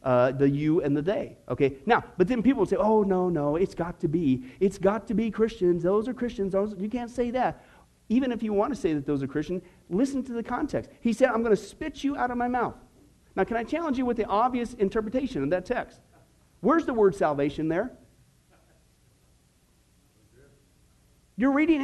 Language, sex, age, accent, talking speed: English, male, 50-69, American, 205 wpm